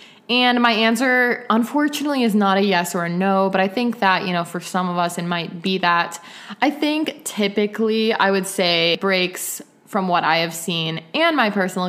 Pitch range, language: 175-205 Hz, English